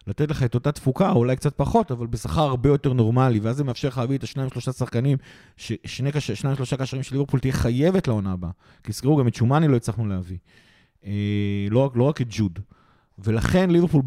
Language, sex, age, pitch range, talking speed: Hebrew, male, 30-49, 110-140 Hz, 195 wpm